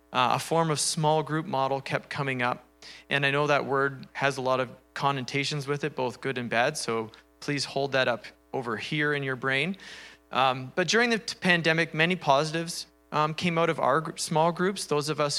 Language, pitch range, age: English, 115-150 Hz, 30-49